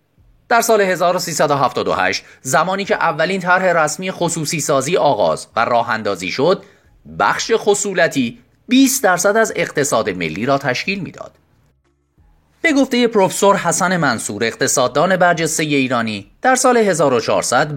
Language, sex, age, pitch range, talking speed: Persian, male, 30-49, 125-205 Hz, 120 wpm